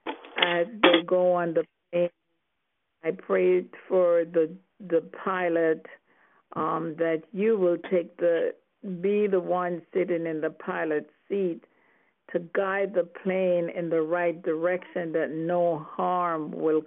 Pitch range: 165-185 Hz